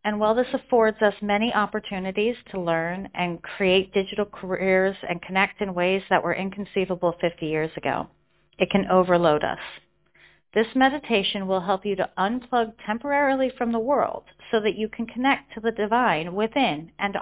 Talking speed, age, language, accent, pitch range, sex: 165 wpm, 40-59, English, American, 180-225 Hz, female